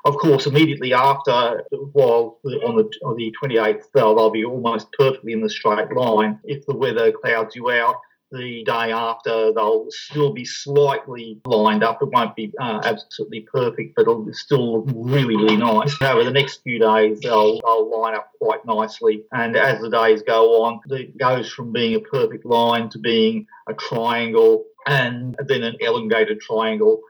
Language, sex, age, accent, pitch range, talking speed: English, male, 40-59, Australian, 115-175 Hz, 180 wpm